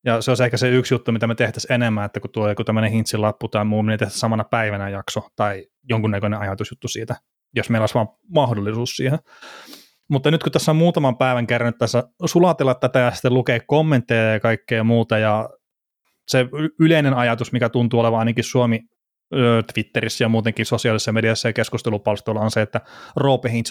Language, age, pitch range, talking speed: Finnish, 20-39, 110-125 Hz, 185 wpm